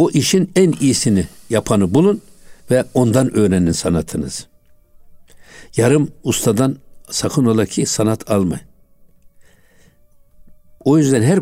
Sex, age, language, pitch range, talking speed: male, 60-79, Turkish, 95-135 Hz, 105 wpm